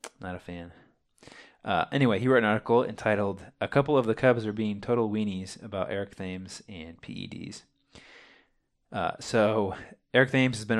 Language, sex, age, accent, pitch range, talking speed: English, male, 20-39, American, 95-115 Hz, 165 wpm